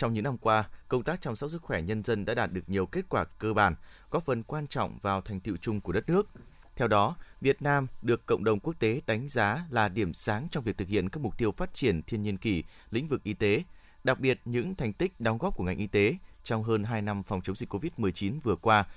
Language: Vietnamese